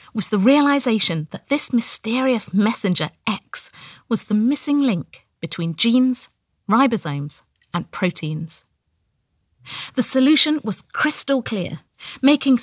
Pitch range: 170-250 Hz